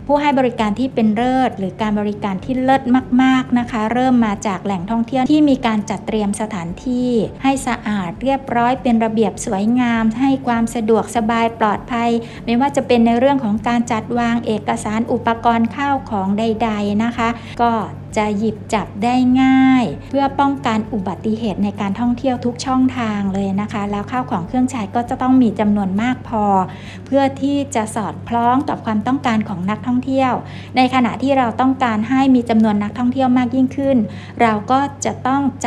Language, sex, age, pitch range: Thai, female, 60-79, 215-255 Hz